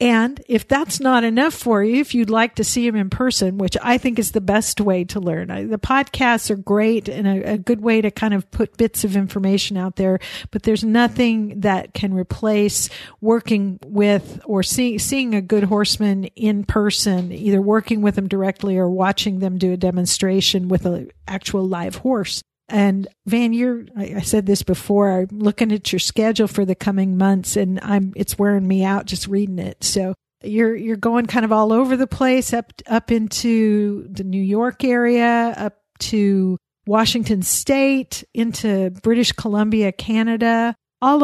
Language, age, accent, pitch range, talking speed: English, 50-69, American, 195-230 Hz, 180 wpm